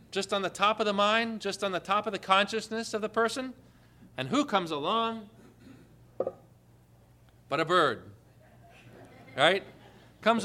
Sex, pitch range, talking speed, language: male, 155-220 Hz, 150 wpm, English